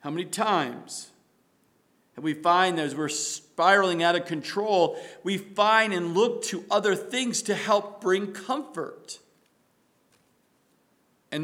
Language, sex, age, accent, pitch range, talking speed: English, male, 50-69, American, 195-265 Hz, 130 wpm